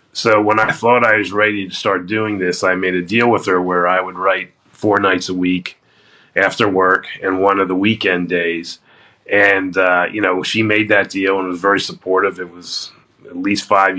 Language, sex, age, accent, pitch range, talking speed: English, male, 30-49, American, 95-110 Hz, 215 wpm